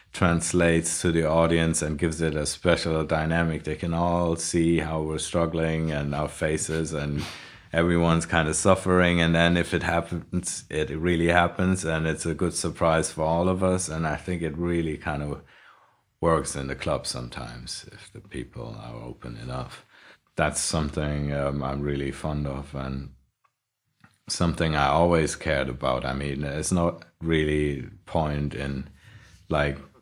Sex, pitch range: male, 75-85 Hz